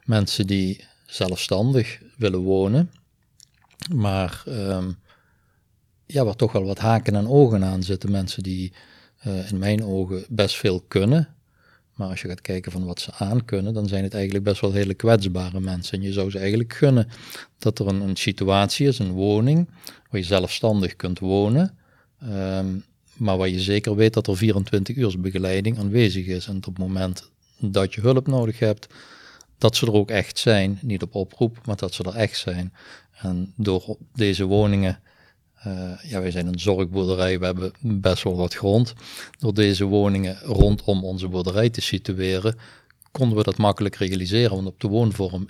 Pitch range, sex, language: 95-110 Hz, male, Dutch